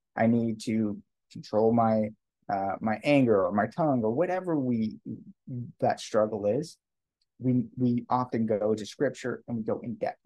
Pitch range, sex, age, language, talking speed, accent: 105-125 Hz, male, 30-49, English, 165 wpm, American